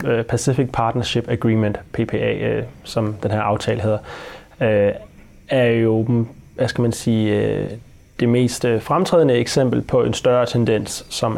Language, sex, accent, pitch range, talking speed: Danish, male, native, 110-125 Hz, 125 wpm